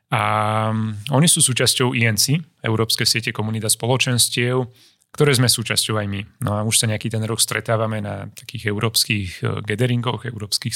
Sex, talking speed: male, 150 wpm